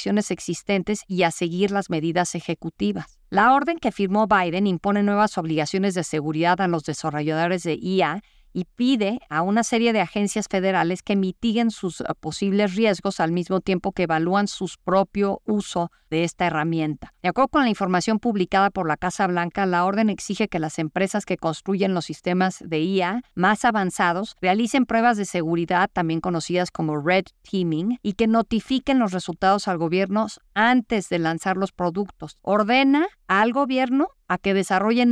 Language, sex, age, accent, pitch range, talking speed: Spanish, female, 40-59, Mexican, 170-210 Hz, 165 wpm